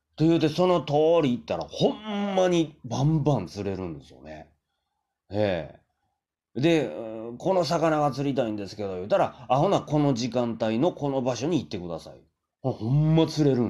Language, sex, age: Japanese, male, 30-49